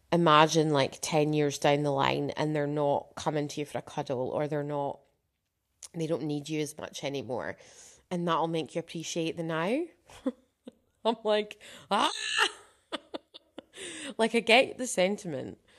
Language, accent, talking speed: English, British, 155 wpm